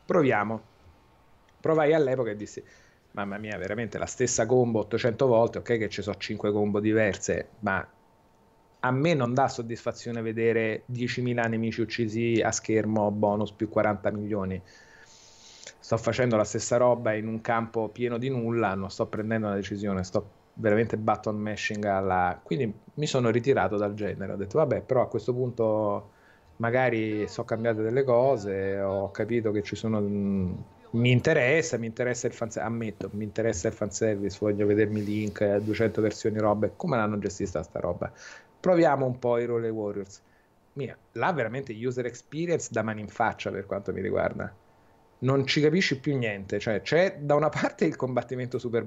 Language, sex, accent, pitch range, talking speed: Italian, male, native, 105-125 Hz, 165 wpm